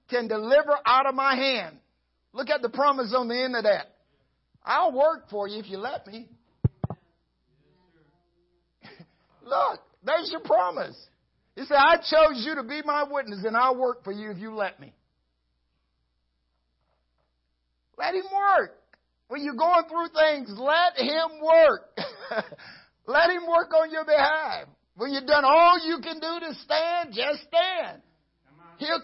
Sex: male